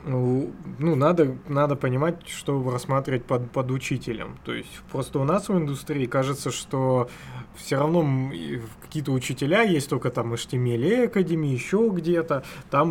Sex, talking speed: male, 145 wpm